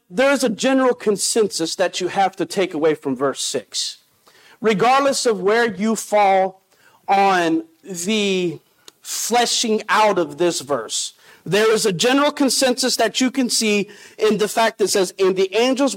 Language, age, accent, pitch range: English, 50-69, American, 195-280 Hz